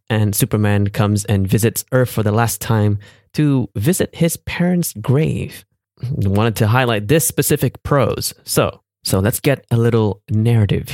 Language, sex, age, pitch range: English, male, 20-39, 100-130 Hz